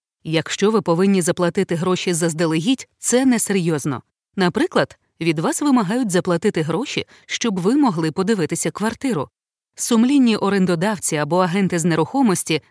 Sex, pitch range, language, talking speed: female, 165-225 Hz, Ukrainian, 120 wpm